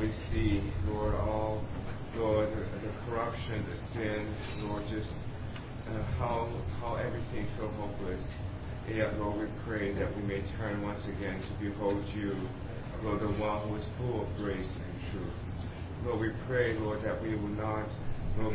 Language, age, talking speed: English, 40-59, 170 wpm